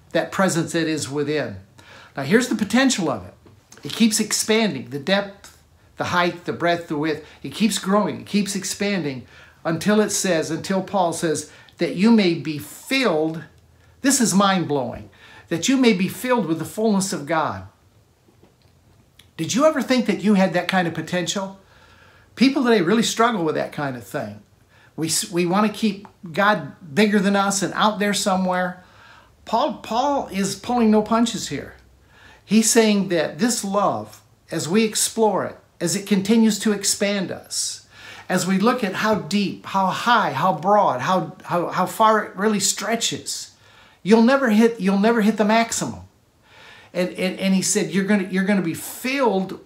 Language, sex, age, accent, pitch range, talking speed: English, male, 60-79, American, 155-215 Hz, 170 wpm